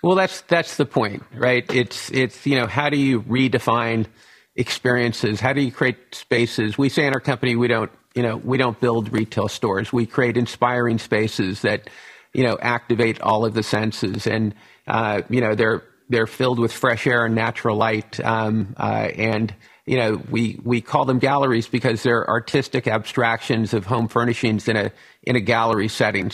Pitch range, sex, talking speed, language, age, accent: 110-125 Hz, male, 185 wpm, English, 50-69, American